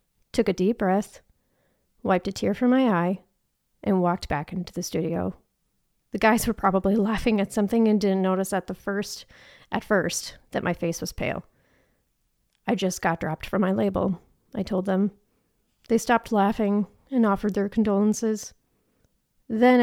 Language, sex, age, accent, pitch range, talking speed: English, female, 30-49, American, 195-230 Hz, 165 wpm